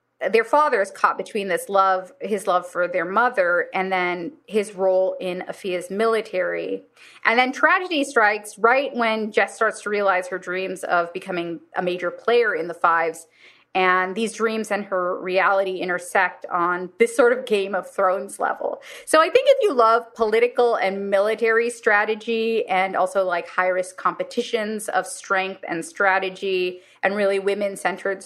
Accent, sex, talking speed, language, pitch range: American, female, 160 wpm, English, 185-235 Hz